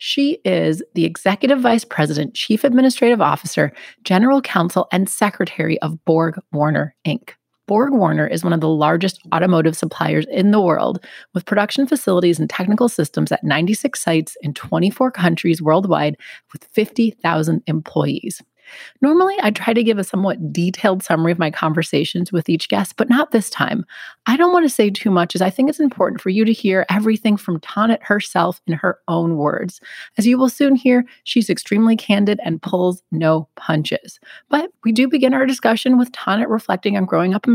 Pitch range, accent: 165-225 Hz, American